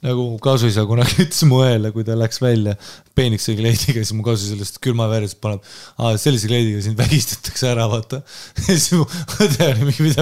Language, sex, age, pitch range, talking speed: English, male, 20-39, 105-130 Hz, 175 wpm